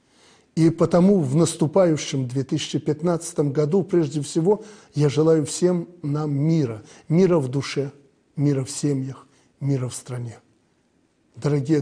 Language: Russian